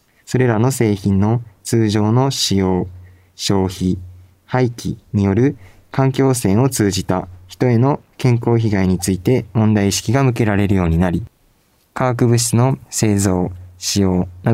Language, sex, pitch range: Japanese, male, 95-120 Hz